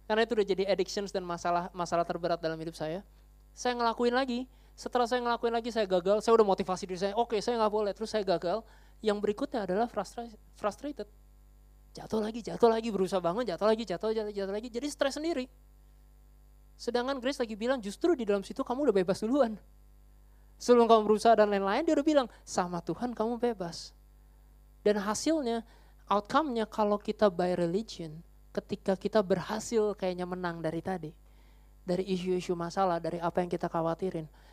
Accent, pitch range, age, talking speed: native, 170-220 Hz, 20-39, 175 wpm